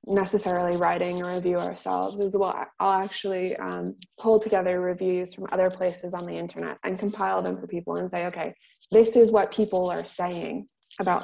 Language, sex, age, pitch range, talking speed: English, female, 20-39, 175-200 Hz, 180 wpm